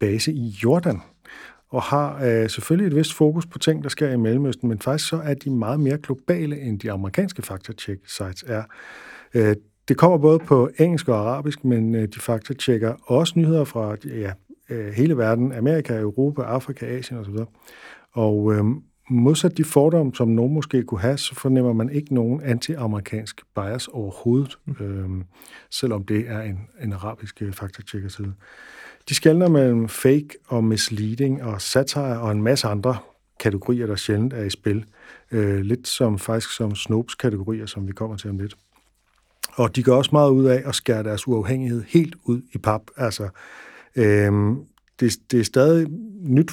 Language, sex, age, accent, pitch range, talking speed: Danish, male, 50-69, native, 110-135 Hz, 170 wpm